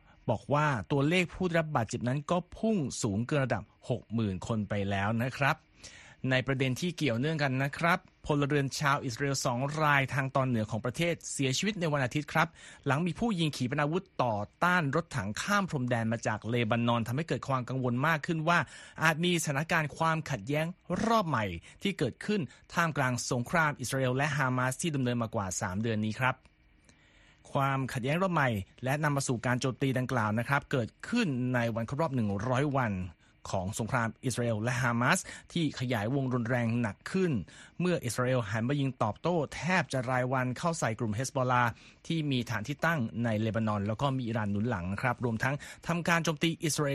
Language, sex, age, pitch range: Thai, male, 30-49, 120-155 Hz